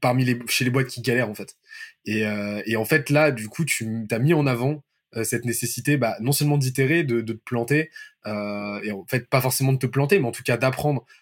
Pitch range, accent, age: 115-145 Hz, French, 20-39